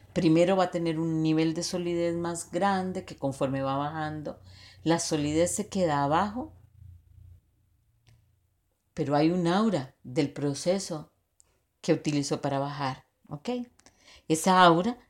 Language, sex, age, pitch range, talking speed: Spanish, female, 40-59, 105-170 Hz, 125 wpm